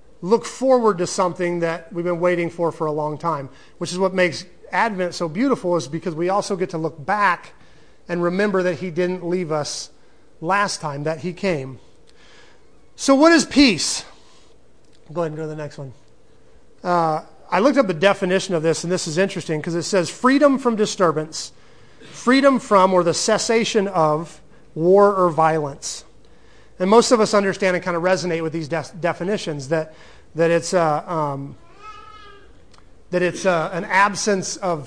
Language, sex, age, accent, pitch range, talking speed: English, male, 30-49, American, 165-200 Hz, 175 wpm